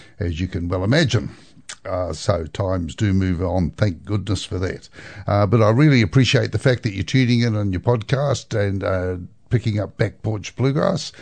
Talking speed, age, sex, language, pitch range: 195 wpm, 60-79, male, English, 90-110 Hz